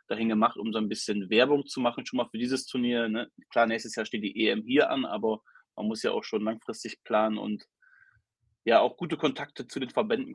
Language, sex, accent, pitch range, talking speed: German, male, German, 115-145 Hz, 225 wpm